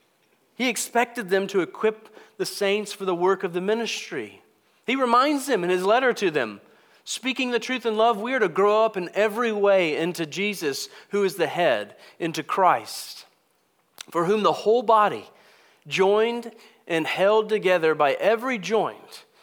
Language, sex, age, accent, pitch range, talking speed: English, male, 40-59, American, 160-225 Hz, 165 wpm